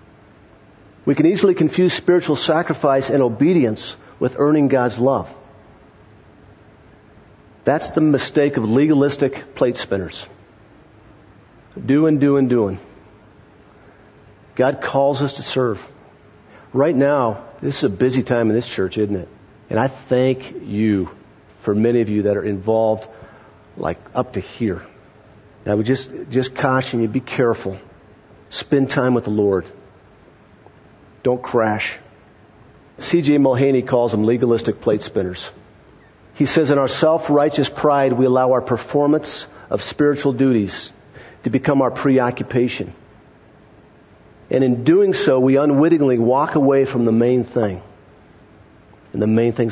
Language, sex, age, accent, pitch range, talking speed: English, male, 50-69, American, 105-135 Hz, 130 wpm